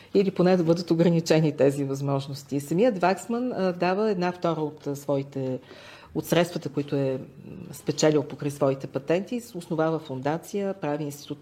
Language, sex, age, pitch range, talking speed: Bulgarian, female, 40-59, 145-180 Hz, 135 wpm